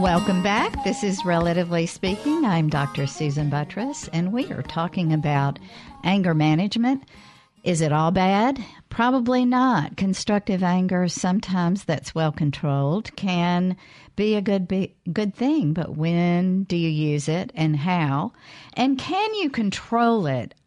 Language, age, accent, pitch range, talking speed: English, 50-69, American, 150-195 Hz, 135 wpm